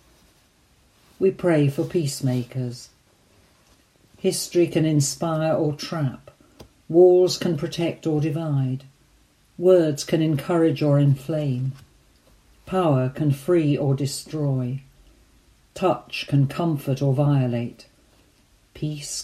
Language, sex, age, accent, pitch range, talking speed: English, female, 50-69, British, 135-165 Hz, 95 wpm